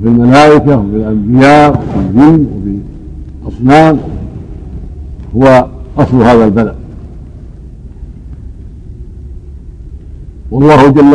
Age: 60-79